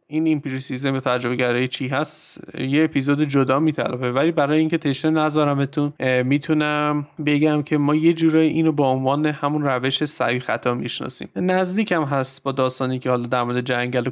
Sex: male